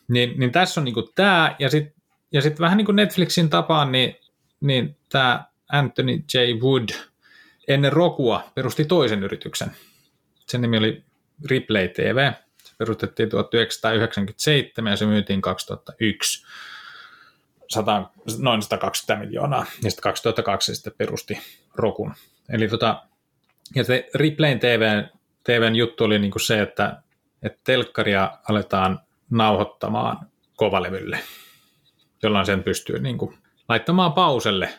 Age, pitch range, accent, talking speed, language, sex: 30-49, 105-140 Hz, native, 120 wpm, Finnish, male